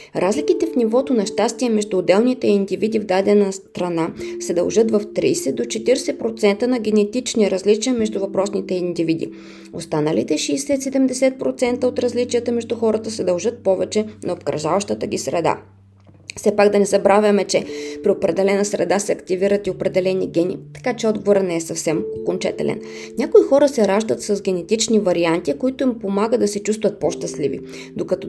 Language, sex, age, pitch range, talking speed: Bulgarian, female, 20-39, 175-220 Hz, 155 wpm